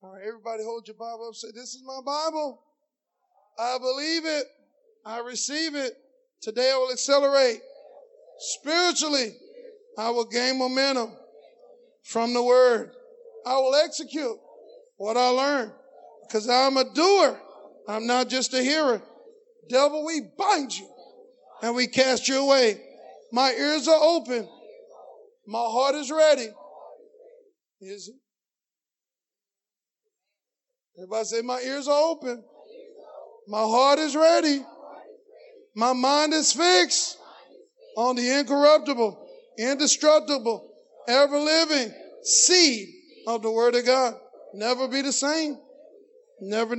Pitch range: 230-315 Hz